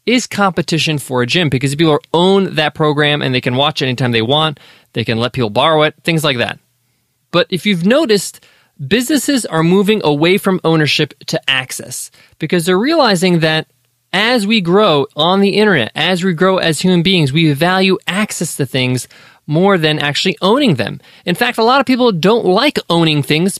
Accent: American